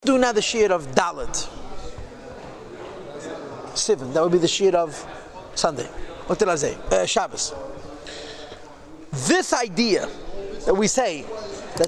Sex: male